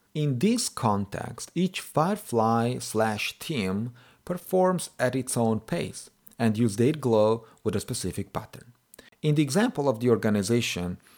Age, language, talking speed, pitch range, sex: 40-59, English, 140 wpm, 100-130 Hz, male